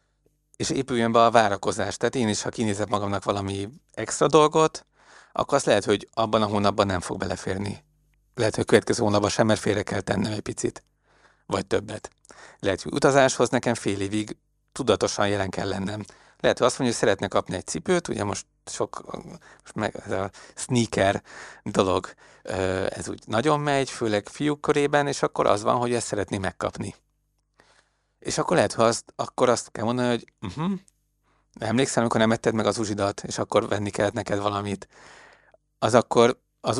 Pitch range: 100-125 Hz